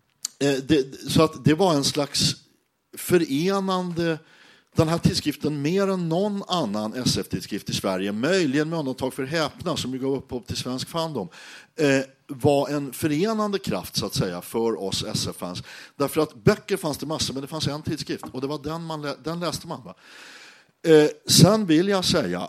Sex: male